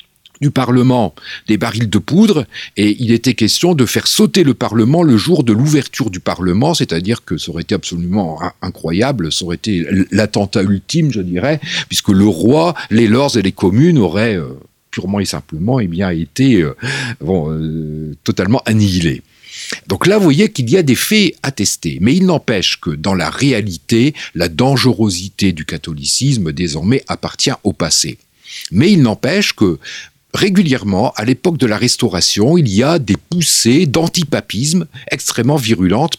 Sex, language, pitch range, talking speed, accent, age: male, French, 100-150 Hz, 165 wpm, French, 50-69